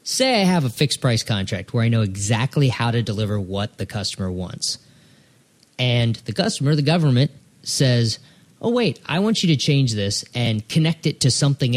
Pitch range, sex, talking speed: 115-145 Hz, male, 190 wpm